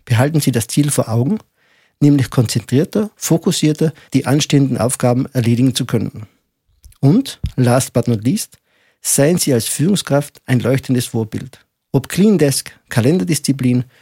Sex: male